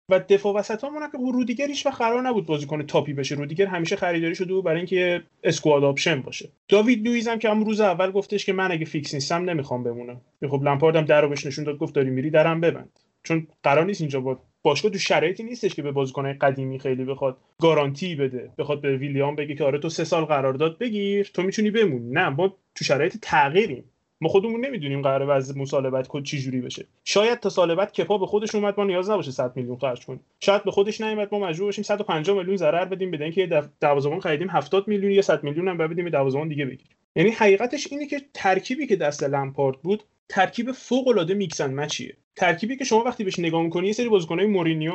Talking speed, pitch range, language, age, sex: 210 wpm, 145-205 Hz, Persian, 30-49, male